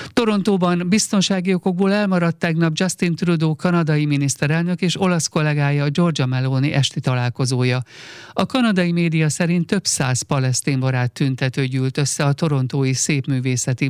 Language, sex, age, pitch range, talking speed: Hungarian, male, 50-69, 130-175 Hz, 130 wpm